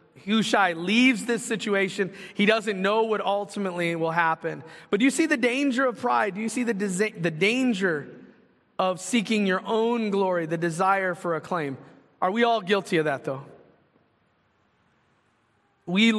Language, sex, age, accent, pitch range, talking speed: English, male, 30-49, American, 170-215 Hz, 155 wpm